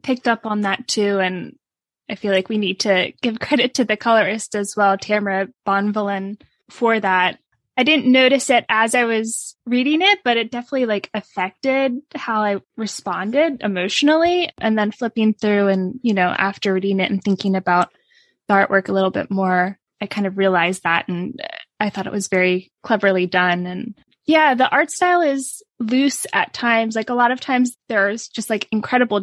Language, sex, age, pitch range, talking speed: English, female, 10-29, 190-240 Hz, 185 wpm